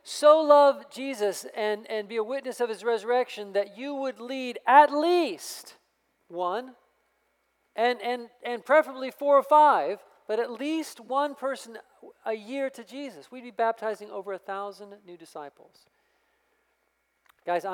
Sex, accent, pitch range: male, American, 175-230 Hz